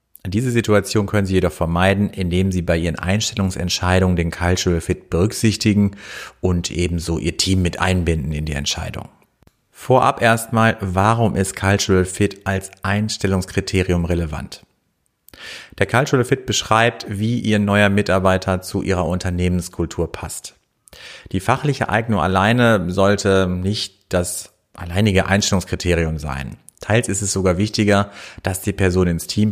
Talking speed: 130 wpm